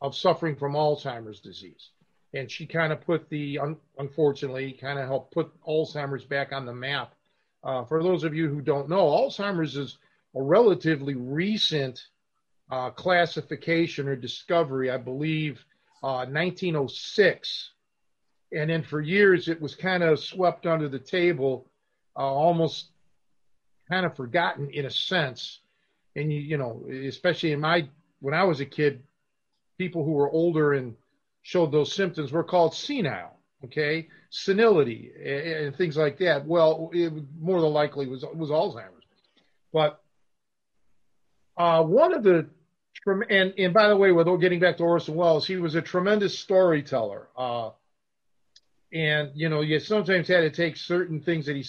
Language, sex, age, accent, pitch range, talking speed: English, male, 50-69, American, 140-175 Hz, 160 wpm